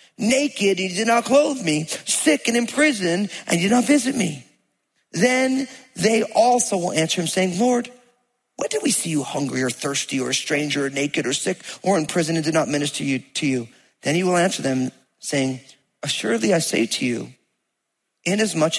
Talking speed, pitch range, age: 200 wpm, 140-230 Hz, 40-59